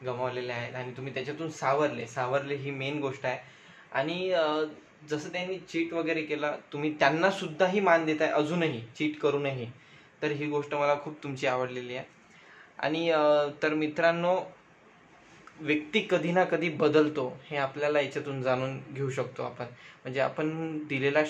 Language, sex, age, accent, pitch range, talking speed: Marathi, male, 20-39, native, 130-150 Hz, 100 wpm